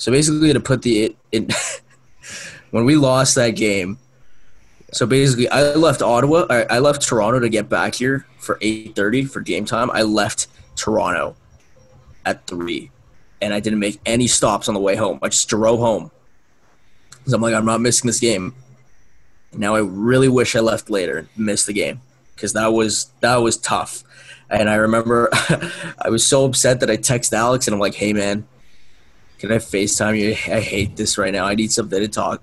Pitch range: 110-130 Hz